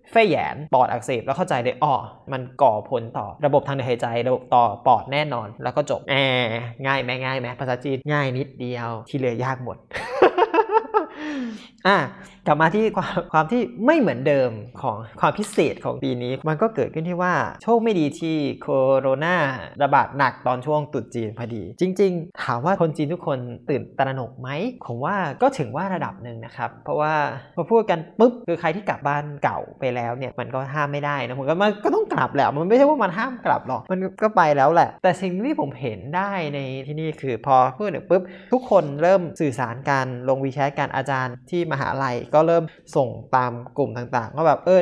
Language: Thai